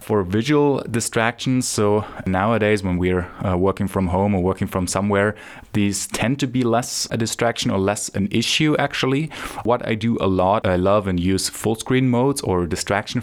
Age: 20-39